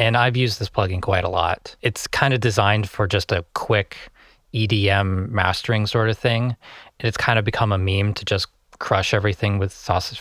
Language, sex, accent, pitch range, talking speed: English, male, American, 95-115 Hz, 195 wpm